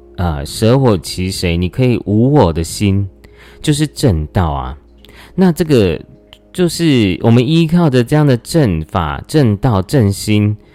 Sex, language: male, Chinese